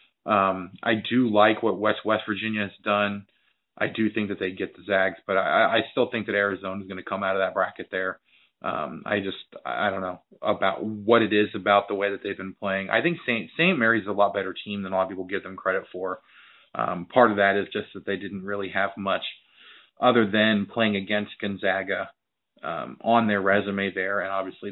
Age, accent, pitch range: 30-49, American, 95-110 Hz